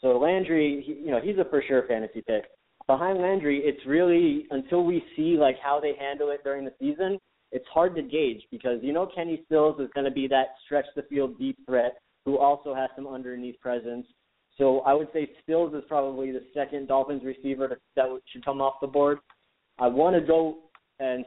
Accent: American